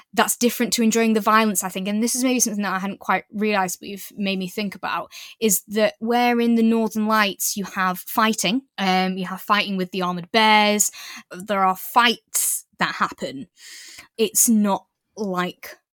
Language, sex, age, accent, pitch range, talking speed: English, female, 10-29, British, 190-230 Hz, 190 wpm